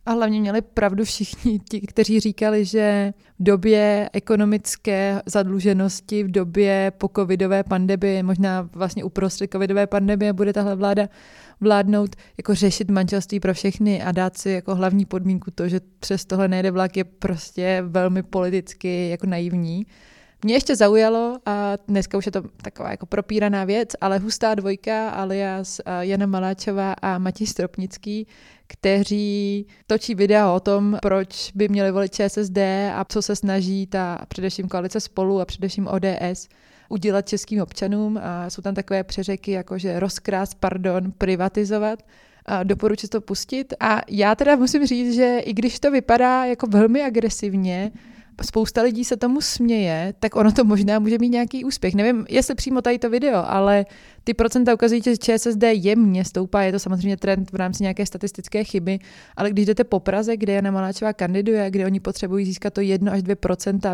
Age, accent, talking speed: 20-39, native, 165 wpm